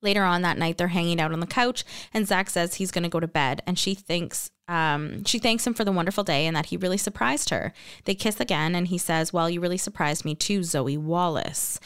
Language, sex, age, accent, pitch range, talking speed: English, female, 20-39, American, 160-195 Hz, 250 wpm